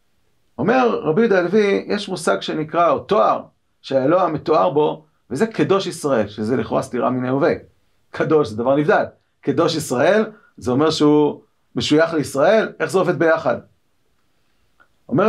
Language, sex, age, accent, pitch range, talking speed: Hebrew, male, 40-59, native, 145-225 Hz, 140 wpm